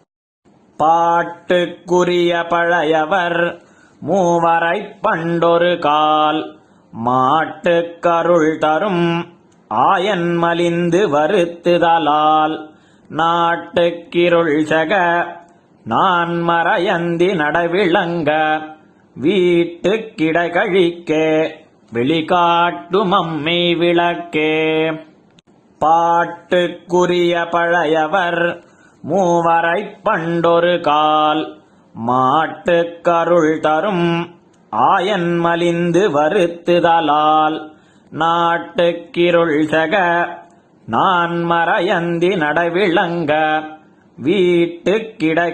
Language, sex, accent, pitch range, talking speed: Tamil, male, native, 160-175 Hz, 40 wpm